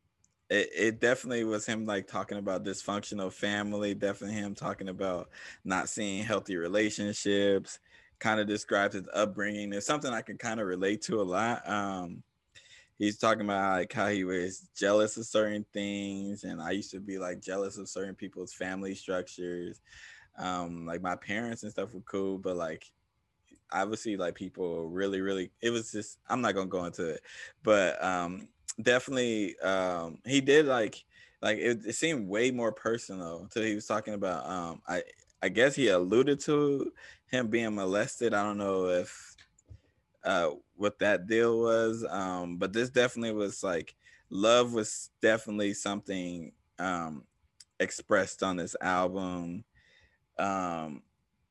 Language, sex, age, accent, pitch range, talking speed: English, male, 20-39, American, 95-110 Hz, 160 wpm